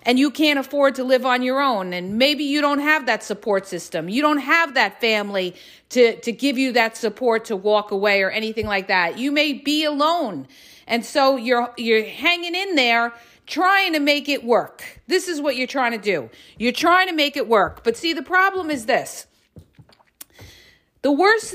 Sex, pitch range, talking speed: female, 230-300 Hz, 200 wpm